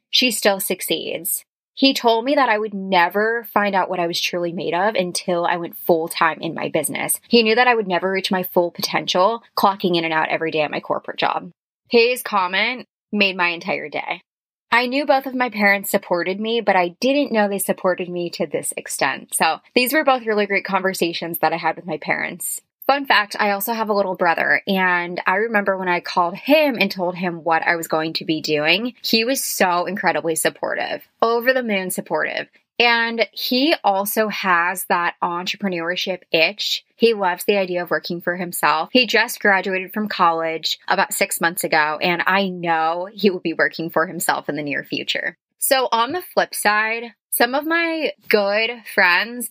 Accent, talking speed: American, 195 wpm